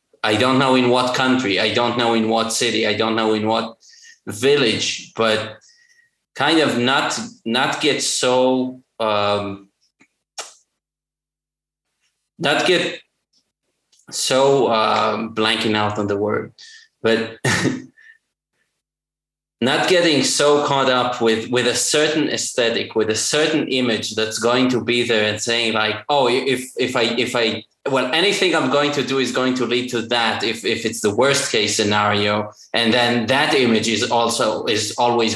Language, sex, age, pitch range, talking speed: English, male, 20-39, 110-130 Hz, 155 wpm